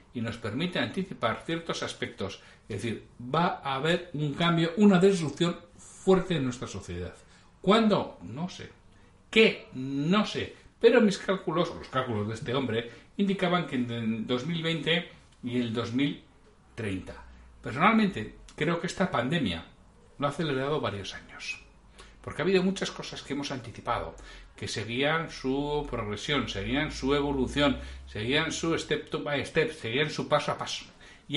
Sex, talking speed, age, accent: male, 145 wpm, 60-79, Spanish